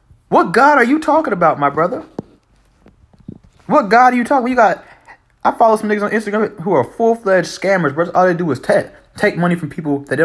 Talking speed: 225 wpm